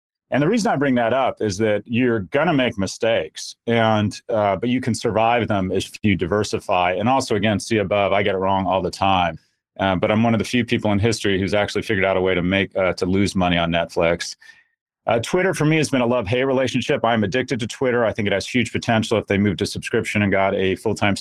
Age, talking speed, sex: 30-49, 245 wpm, male